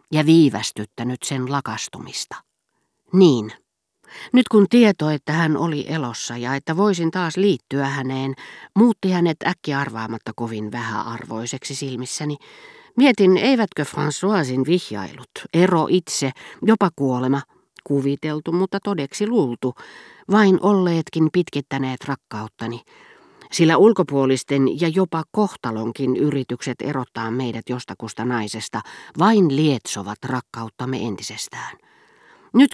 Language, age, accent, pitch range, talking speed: Finnish, 50-69, native, 125-180 Hz, 105 wpm